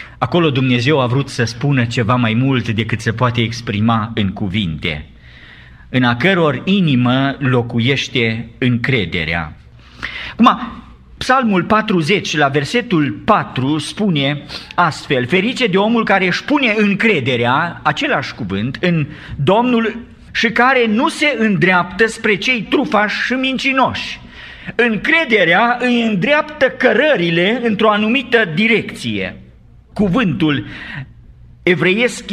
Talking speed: 110 wpm